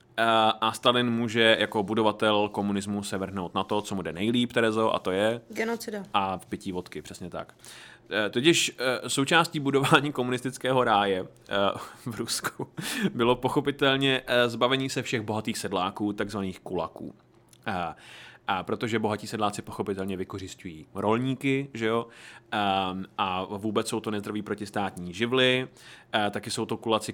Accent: native